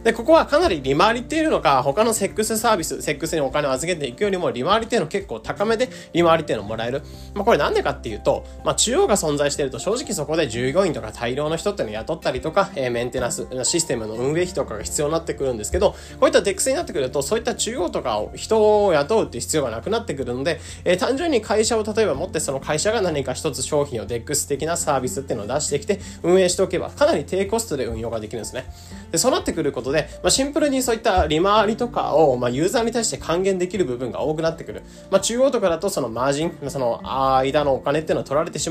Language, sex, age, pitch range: Japanese, male, 20-39, 140-215 Hz